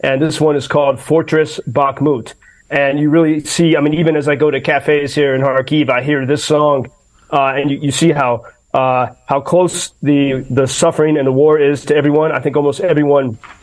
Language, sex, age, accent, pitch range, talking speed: English, male, 30-49, American, 135-160 Hz, 210 wpm